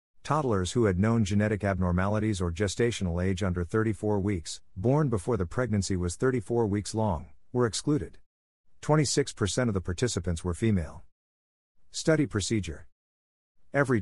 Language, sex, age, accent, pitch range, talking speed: English, male, 50-69, American, 90-115 Hz, 135 wpm